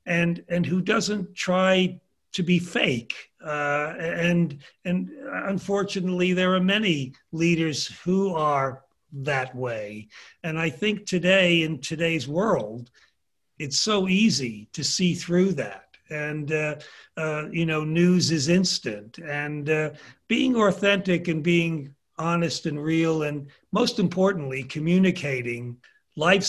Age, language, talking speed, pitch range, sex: 60-79, English, 125 wpm, 150-180 Hz, male